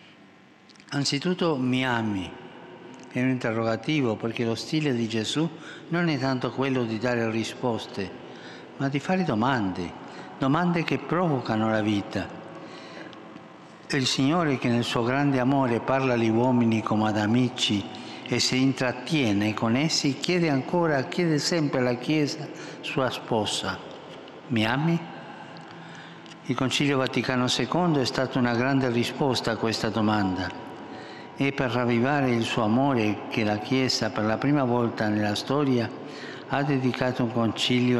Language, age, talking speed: Italian, 60-79, 135 wpm